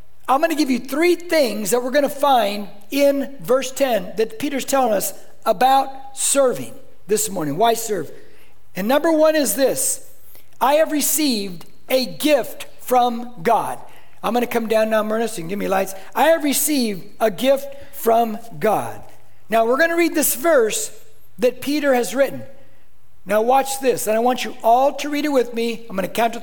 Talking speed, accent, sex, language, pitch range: 180 wpm, American, male, English, 235-295 Hz